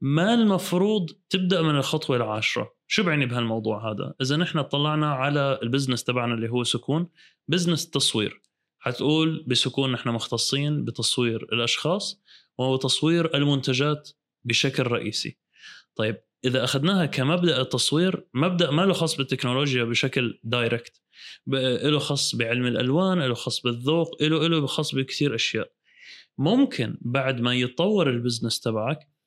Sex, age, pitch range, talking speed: male, 20-39, 125-175 Hz, 125 wpm